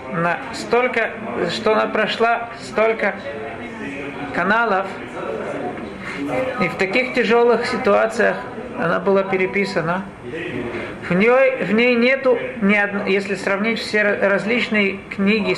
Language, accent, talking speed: Russian, native, 100 wpm